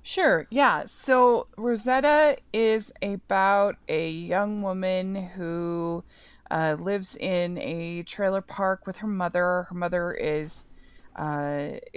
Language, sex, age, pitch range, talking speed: English, female, 20-39, 170-225 Hz, 115 wpm